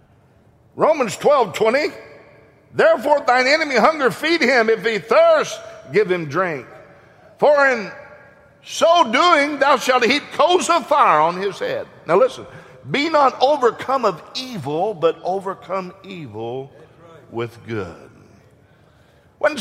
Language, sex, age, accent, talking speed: English, male, 50-69, American, 125 wpm